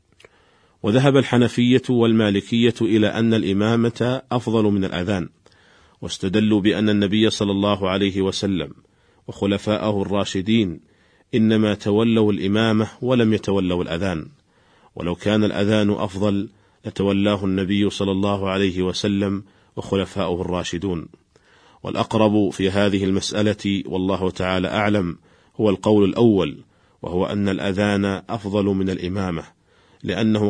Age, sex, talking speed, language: 40-59, male, 105 wpm, Arabic